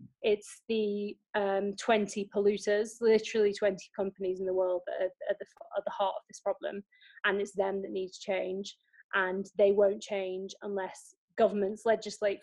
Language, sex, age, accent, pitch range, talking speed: English, female, 30-49, British, 195-220 Hz, 165 wpm